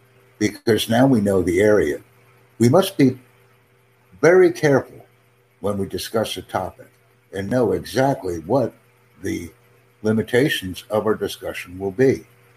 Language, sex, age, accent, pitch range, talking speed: English, male, 60-79, American, 115-130 Hz, 130 wpm